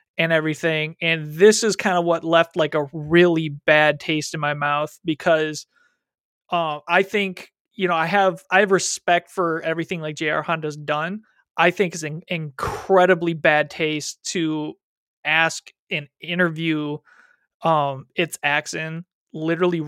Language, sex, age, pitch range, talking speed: English, male, 20-39, 155-175 Hz, 150 wpm